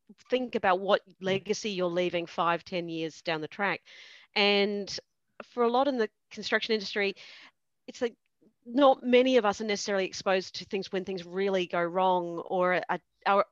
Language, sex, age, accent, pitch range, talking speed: English, female, 40-59, Australian, 175-215 Hz, 165 wpm